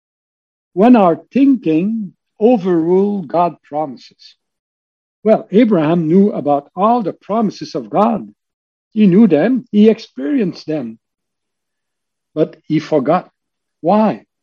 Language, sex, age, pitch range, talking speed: English, male, 60-79, 155-225 Hz, 105 wpm